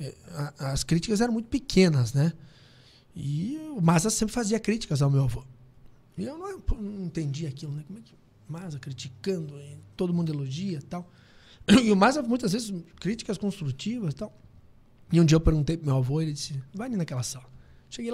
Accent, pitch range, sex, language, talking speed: Brazilian, 140-200 Hz, male, Portuguese, 175 wpm